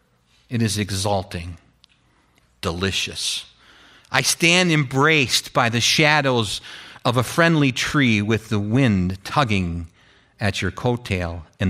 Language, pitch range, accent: English, 100-145 Hz, American